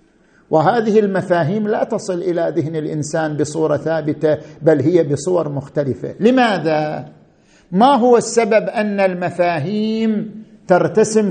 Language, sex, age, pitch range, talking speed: Arabic, male, 50-69, 170-220 Hz, 105 wpm